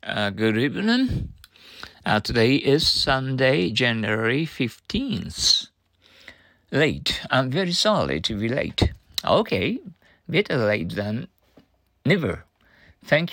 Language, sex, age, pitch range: Japanese, male, 50-69, 110-170 Hz